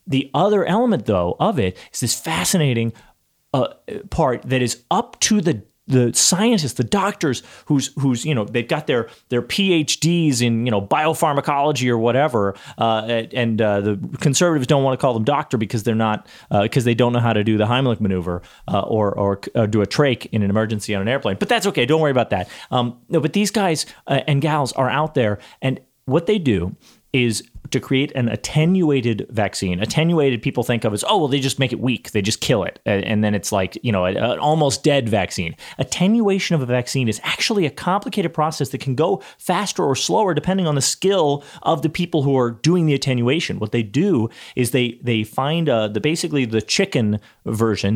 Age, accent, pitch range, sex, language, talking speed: 30-49, American, 110-150 Hz, male, English, 210 wpm